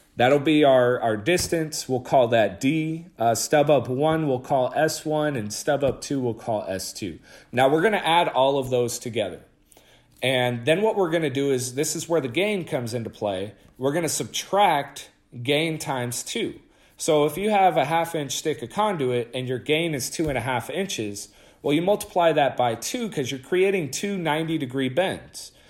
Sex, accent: male, American